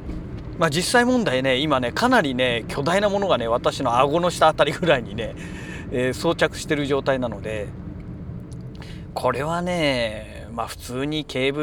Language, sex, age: Japanese, male, 40-59